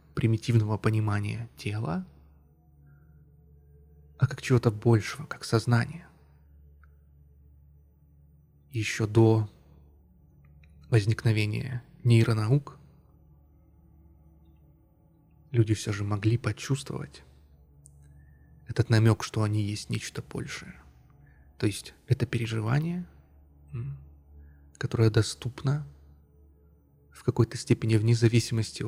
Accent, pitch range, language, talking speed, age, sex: native, 75-115 Hz, Russian, 75 wpm, 20-39, male